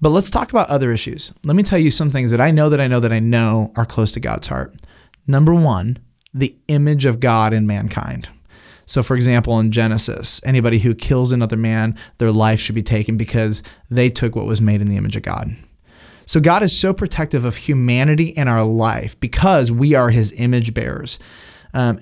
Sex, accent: male, American